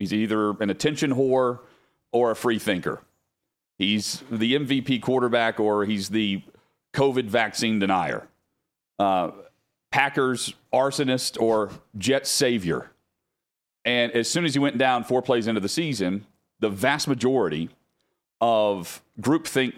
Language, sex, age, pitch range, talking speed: English, male, 40-59, 115-145 Hz, 125 wpm